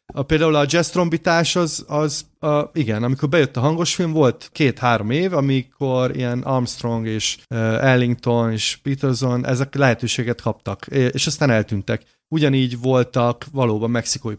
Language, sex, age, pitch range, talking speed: Hungarian, male, 30-49, 120-145 Hz, 130 wpm